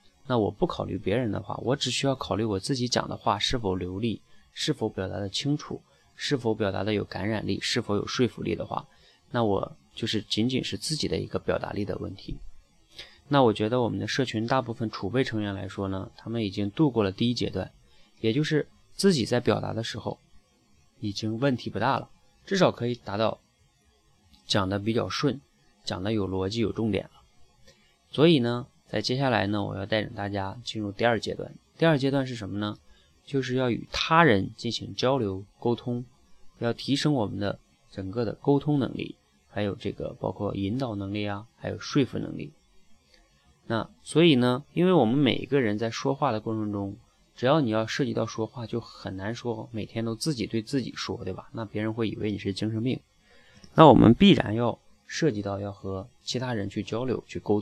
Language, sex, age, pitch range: Chinese, male, 20-39, 100-125 Hz